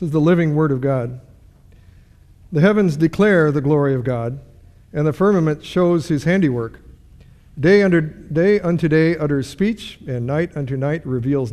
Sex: male